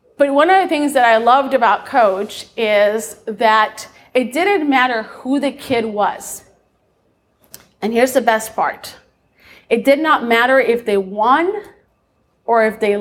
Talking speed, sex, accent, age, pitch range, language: 155 wpm, female, American, 30-49, 230-295 Hz, English